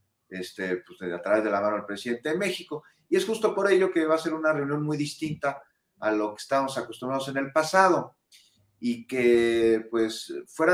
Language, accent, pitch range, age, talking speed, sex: Spanish, Mexican, 125-170 Hz, 40-59, 200 wpm, male